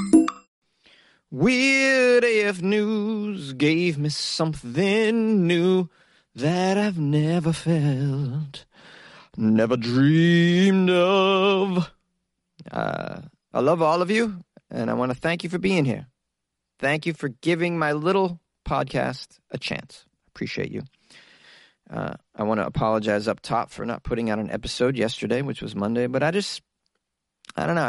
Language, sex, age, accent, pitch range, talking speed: English, male, 30-49, American, 120-175 Hz, 135 wpm